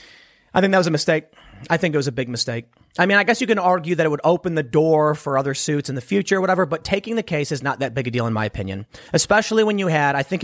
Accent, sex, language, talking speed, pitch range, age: American, male, English, 305 wpm, 130-180 Hz, 40-59